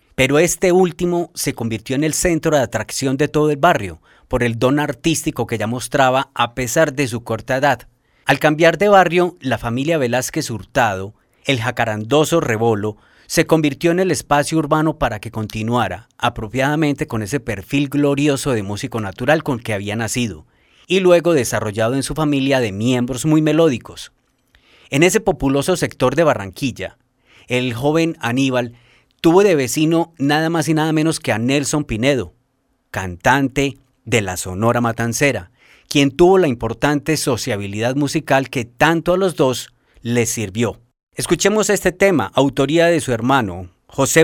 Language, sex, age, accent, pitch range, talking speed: Spanish, male, 30-49, Colombian, 115-155 Hz, 160 wpm